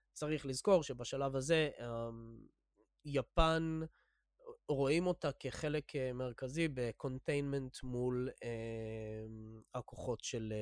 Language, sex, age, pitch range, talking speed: English, male, 20-39, 115-155 Hz, 75 wpm